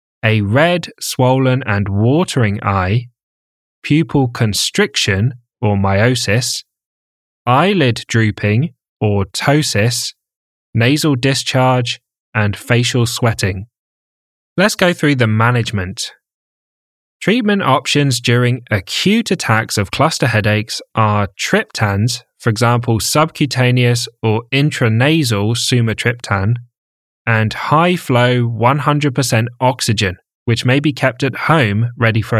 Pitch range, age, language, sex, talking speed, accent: 110-135 Hz, 10-29, English, male, 95 wpm, British